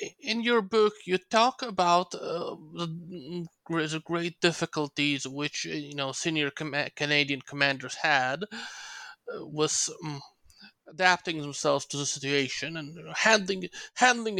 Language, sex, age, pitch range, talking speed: English, male, 30-49, 140-180 Hz, 125 wpm